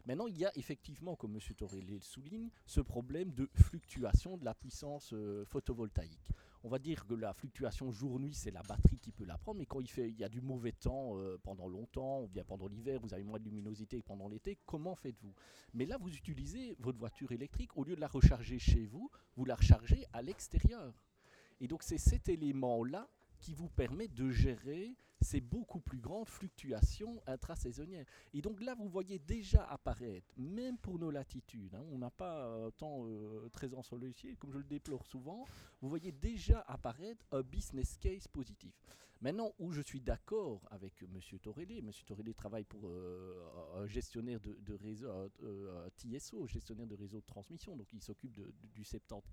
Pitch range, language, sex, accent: 105-140 Hz, French, male, French